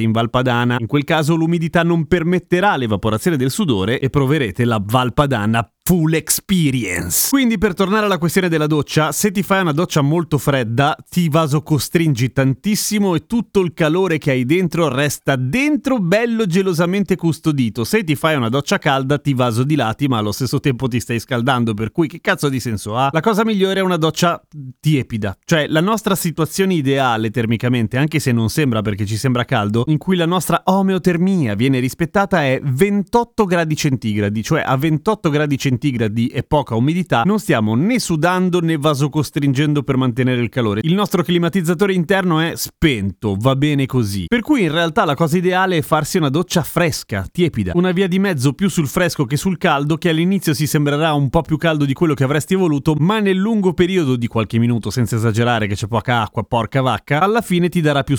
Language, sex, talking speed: Italian, male, 190 wpm